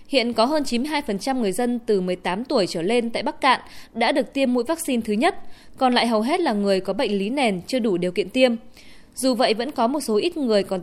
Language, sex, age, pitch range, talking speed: Vietnamese, female, 20-39, 210-275 Hz, 250 wpm